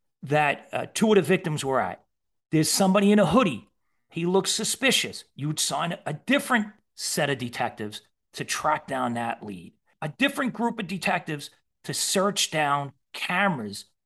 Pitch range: 145-215 Hz